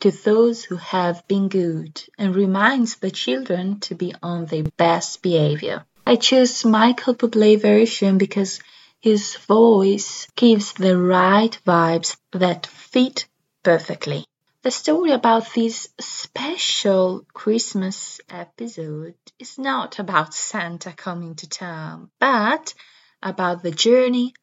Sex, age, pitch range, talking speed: female, 20-39, 180-235 Hz, 120 wpm